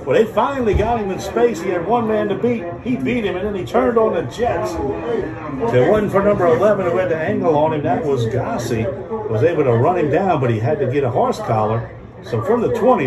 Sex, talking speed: male, 260 wpm